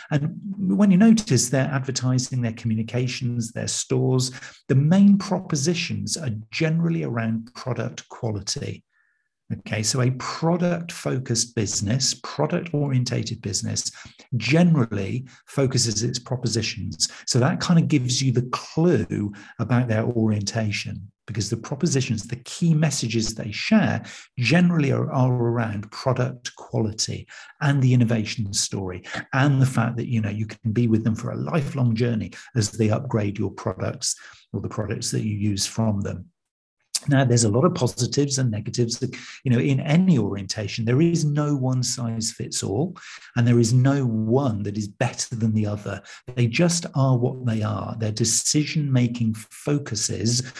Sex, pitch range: male, 110-135 Hz